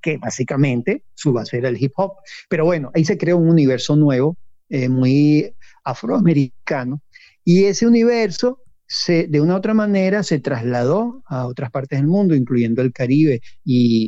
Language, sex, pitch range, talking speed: Spanish, male, 130-170 Hz, 165 wpm